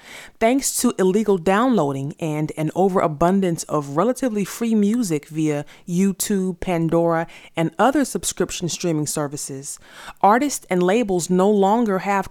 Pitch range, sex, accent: 165-215 Hz, female, American